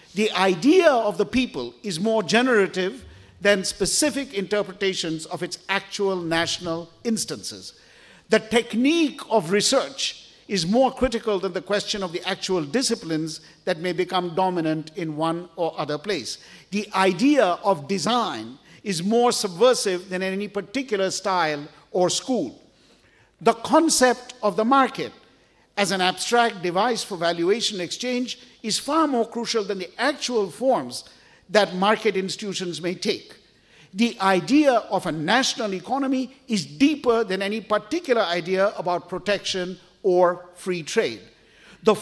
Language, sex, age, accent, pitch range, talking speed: Italian, male, 50-69, Indian, 180-230 Hz, 135 wpm